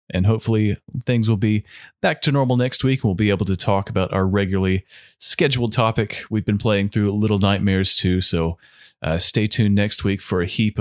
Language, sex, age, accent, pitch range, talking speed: English, male, 30-49, American, 95-120 Hz, 200 wpm